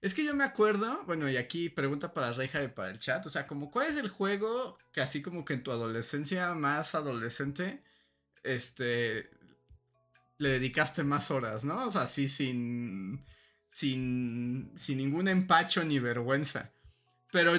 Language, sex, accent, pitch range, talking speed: Spanish, male, Mexican, 130-180 Hz, 165 wpm